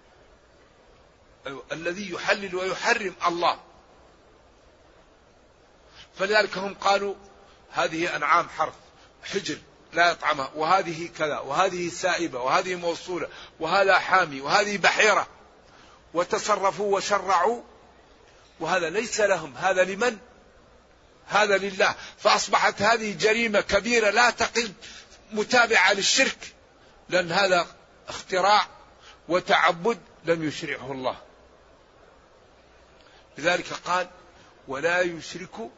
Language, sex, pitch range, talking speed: Arabic, male, 165-205 Hz, 85 wpm